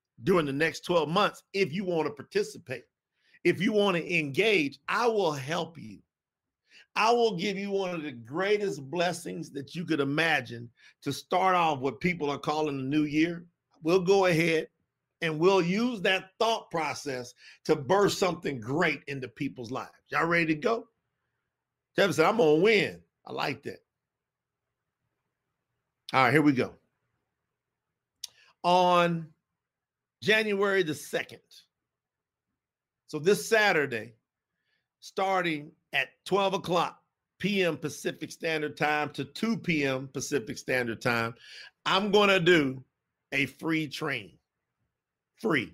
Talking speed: 135 wpm